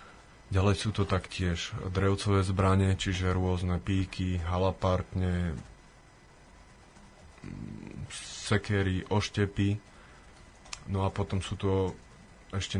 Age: 20-39